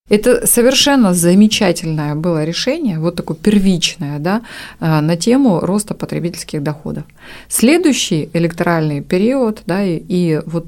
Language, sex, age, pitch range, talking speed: Russian, female, 30-49, 160-200 Hz, 120 wpm